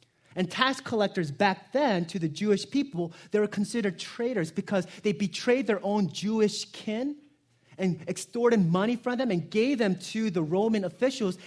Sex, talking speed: male, 165 wpm